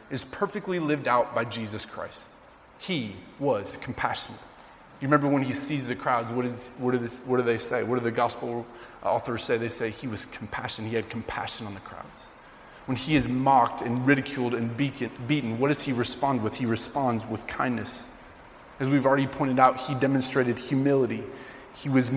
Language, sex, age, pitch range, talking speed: English, male, 20-39, 120-140 Hz, 180 wpm